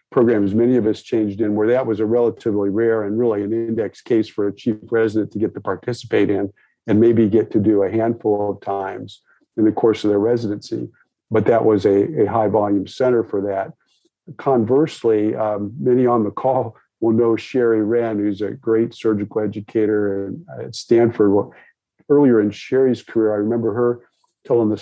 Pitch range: 105-120 Hz